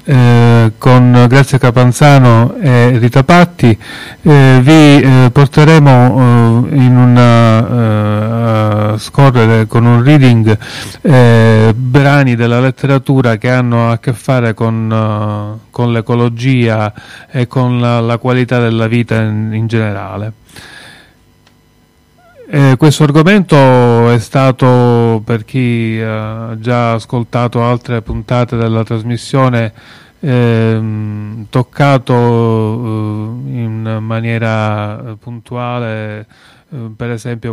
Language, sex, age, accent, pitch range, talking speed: Italian, male, 30-49, native, 110-130 Hz, 105 wpm